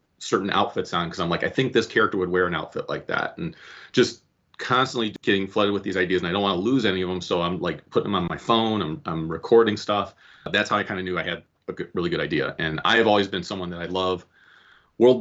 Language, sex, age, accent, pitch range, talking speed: English, male, 30-49, American, 90-105 Hz, 270 wpm